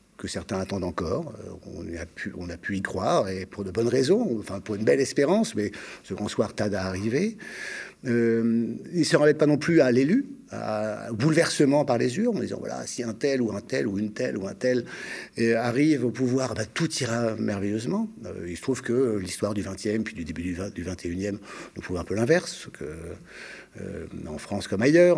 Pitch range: 110-150 Hz